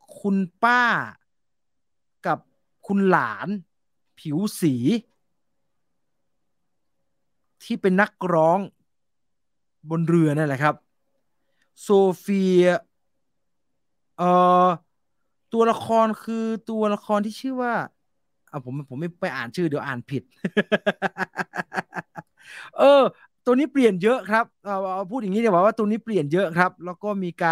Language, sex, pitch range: English, male, 155-210 Hz